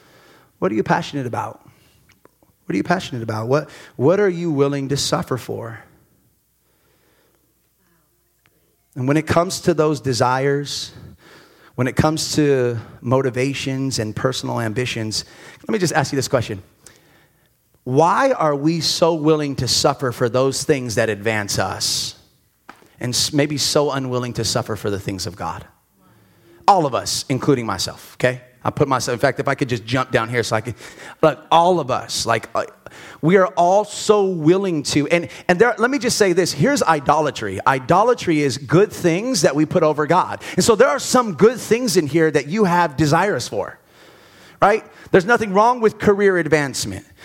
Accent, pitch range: American, 135-195 Hz